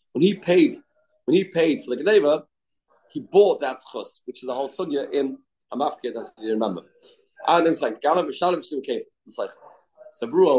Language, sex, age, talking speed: English, male, 30-49, 200 wpm